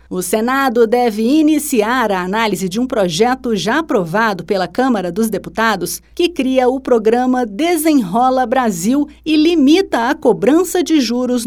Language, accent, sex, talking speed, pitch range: Portuguese, Brazilian, female, 140 wpm, 205-280 Hz